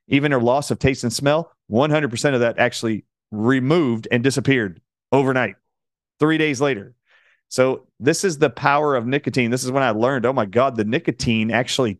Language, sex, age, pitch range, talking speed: English, male, 40-59, 115-140 Hz, 180 wpm